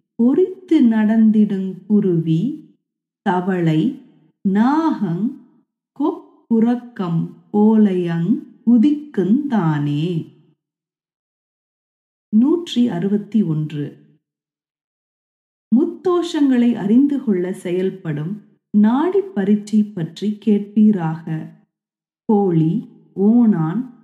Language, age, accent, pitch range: Tamil, 30-49, native, 180-250 Hz